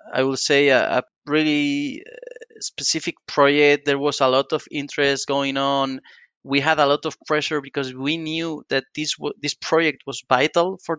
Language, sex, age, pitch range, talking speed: English, male, 20-39, 140-175 Hz, 175 wpm